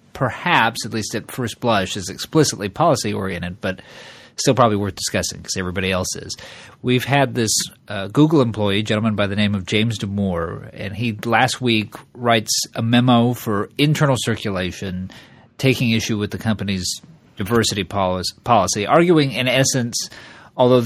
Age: 40-59